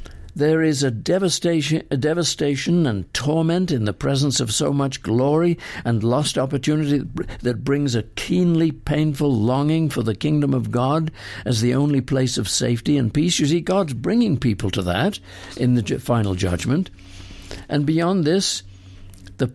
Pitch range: 110-145 Hz